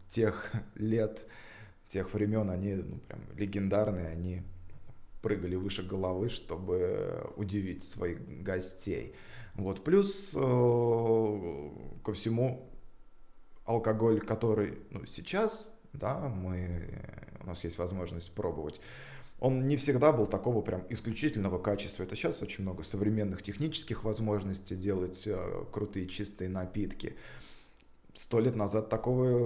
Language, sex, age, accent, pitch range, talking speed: Russian, male, 20-39, native, 95-115 Hz, 115 wpm